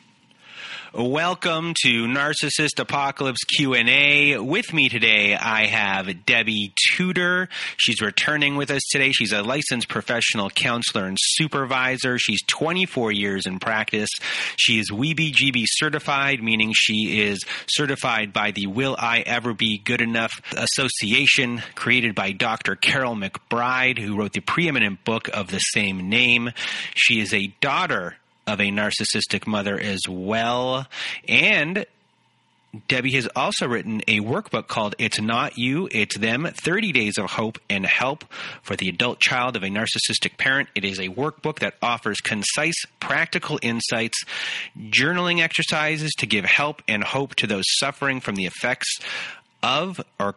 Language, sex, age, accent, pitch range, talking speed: English, male, 30-49, American, 105-140 Hz, 145 wpm